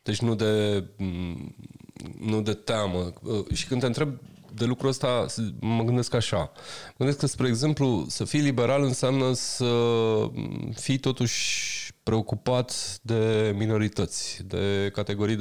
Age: 20-39